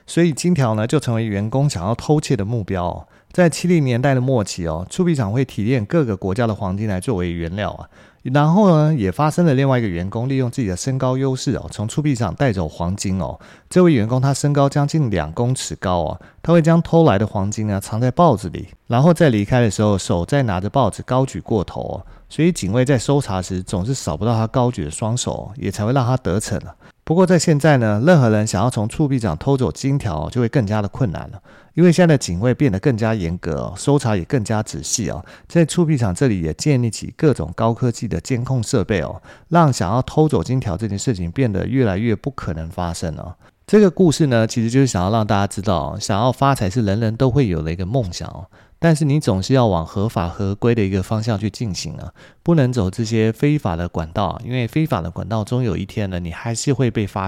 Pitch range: 95-135 Hz